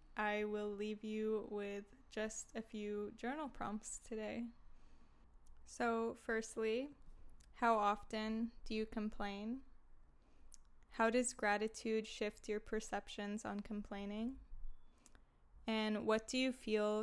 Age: 10-29